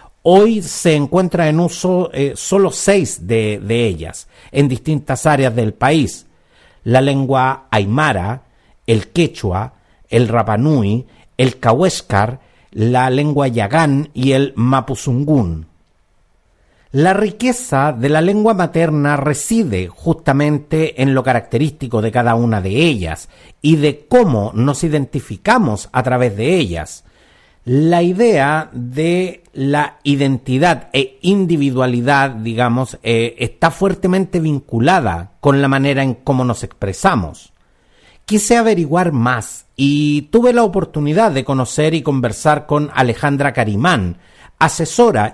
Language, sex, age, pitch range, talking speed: Spanish, male, 50-69, 115-155 Hz, 120 wpm